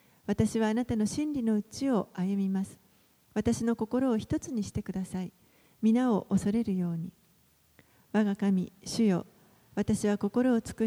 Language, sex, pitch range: Japanese, female, 195-235 Hz